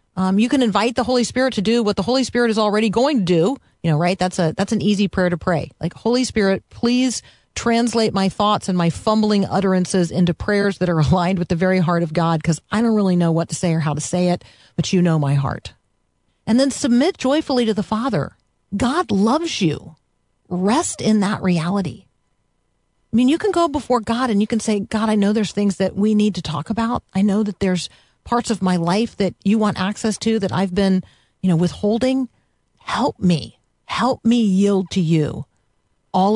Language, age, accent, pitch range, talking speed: English, 40-59, American, 175-230 Hz, 220 wpm